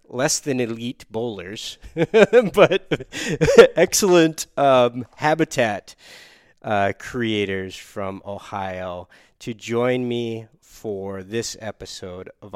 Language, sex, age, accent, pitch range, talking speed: English, male, 30-49, American, 100-130 Hz, 90 wpm